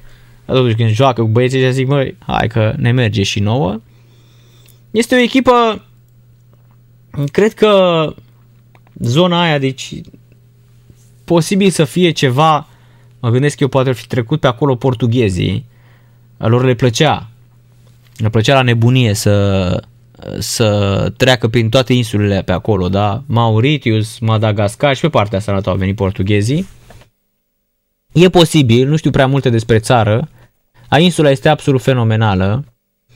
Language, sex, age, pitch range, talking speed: Romanian, male, 20-39, 120-175 Hz, 130 wpm